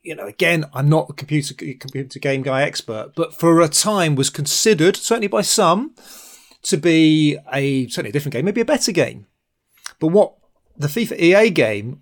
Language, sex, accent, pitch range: English, male, British, 130-170 Hz